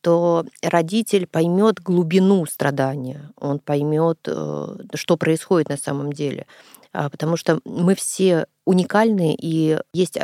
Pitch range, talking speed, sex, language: 145-175 Hz, 110 wpm, female, Russian